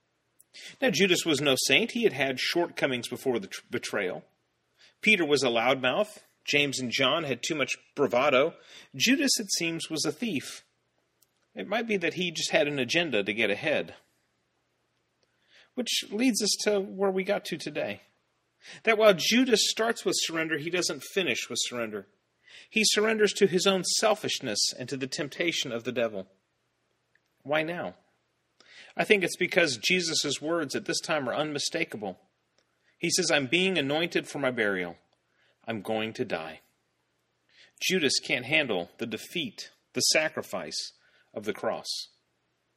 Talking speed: 155 wpm